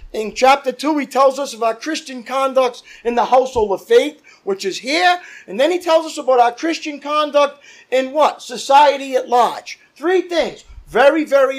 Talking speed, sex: 185 wpm, male